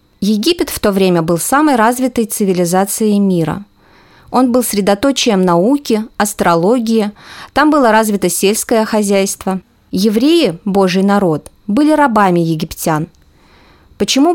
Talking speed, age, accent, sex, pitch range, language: 110 wpm, 20-39, native, female, 190-275 Hz, Russian